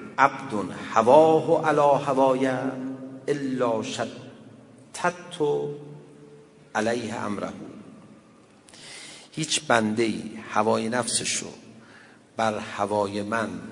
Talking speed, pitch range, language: 80 wpm, 110-155 Hz, Persian